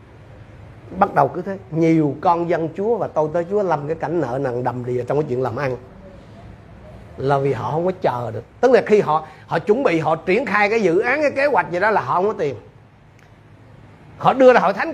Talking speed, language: 235 wpm, Vietnamese